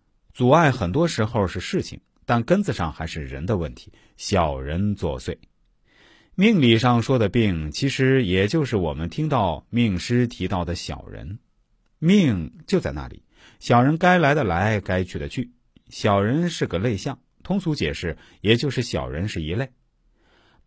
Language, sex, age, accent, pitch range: Chinese, male, 50-69, native, 85-130 Hz